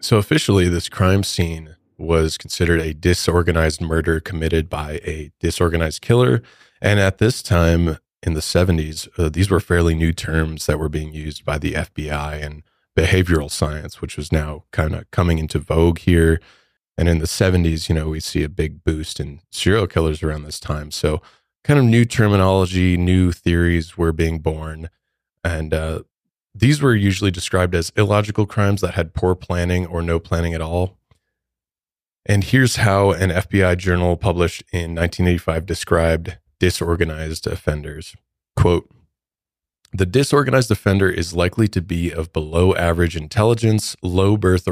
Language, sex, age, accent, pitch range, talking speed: English, male, 30-49, American, 80-95 Hz, 155 wpm